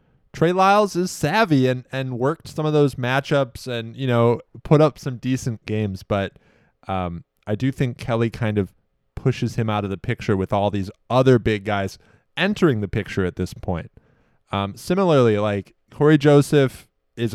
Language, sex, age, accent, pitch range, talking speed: English, male, 20-39, American, 105-130 Hz, 175 wpm